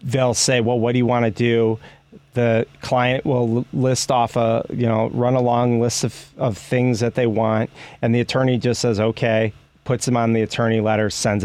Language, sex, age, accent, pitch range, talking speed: English, male, 30-49, American, 115-130 Hz, 205 wpm